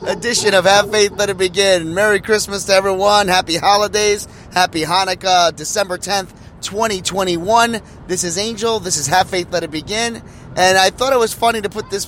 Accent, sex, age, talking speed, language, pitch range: American, male, 30-49, 185 wpm, English, 145-200 Hz